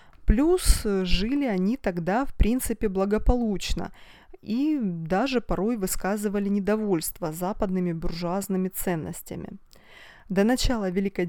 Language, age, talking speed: Russian, 20-39, 95 wpm